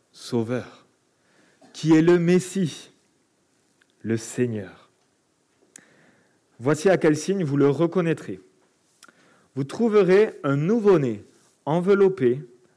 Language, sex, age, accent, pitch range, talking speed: French, male, 40-59, French, 130-195 Hz, 90 wpm